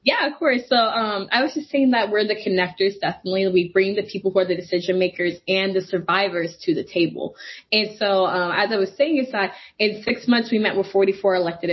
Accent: American